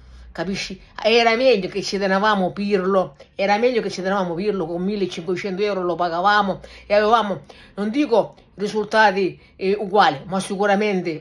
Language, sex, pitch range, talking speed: Italian, female, 195-245 Hz, 145 wpm